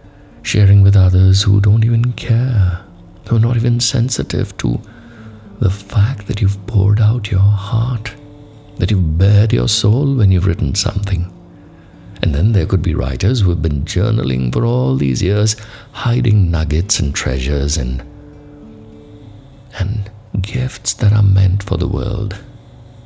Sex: male